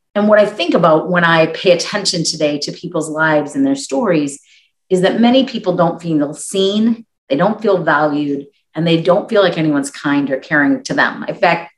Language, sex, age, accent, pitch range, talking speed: English, female, 30-49, American, 150-195 Hz, 205 wpm